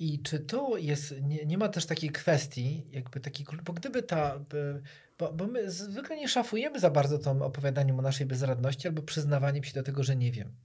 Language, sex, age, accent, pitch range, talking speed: Polish, male, 40-59, native, 140-180 Hz, 205 wpm